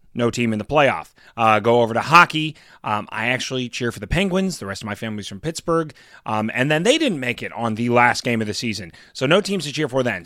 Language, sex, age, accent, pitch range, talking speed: English, male, 30-49, American, 120-170 Hz, 265 wpm